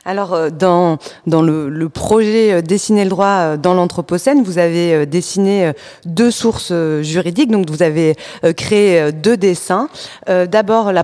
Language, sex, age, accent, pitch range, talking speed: French, female, 20-39, French, 175-220 Hz, 135 wpm